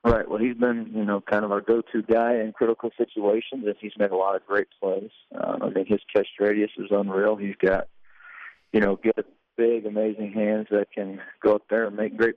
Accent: American